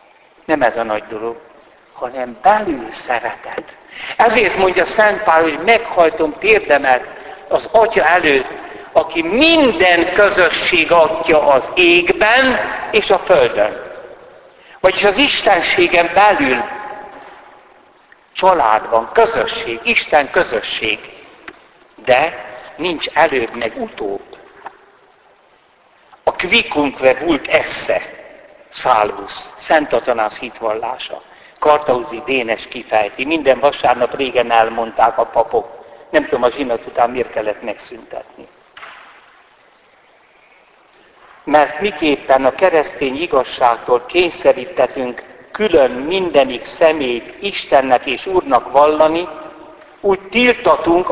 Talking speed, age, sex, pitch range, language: 95 wpm, 60-79, male, 130-215 Hz, Hungarian